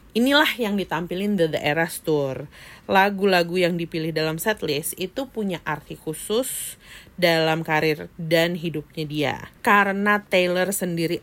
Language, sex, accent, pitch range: Indonesian, female, native, 165-215 Hz